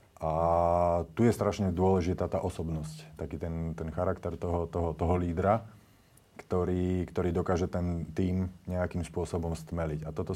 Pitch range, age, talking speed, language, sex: 85-95 Hz, 30-49, 145 wpm, Slovak, male